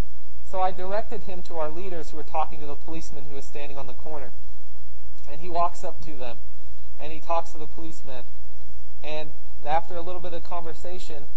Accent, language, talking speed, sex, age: American, English, 200 wpm, male, 30-49